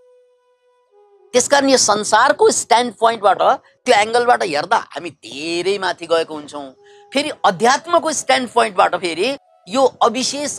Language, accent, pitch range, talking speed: English, Indian, 205-325 Hz, 160 wpm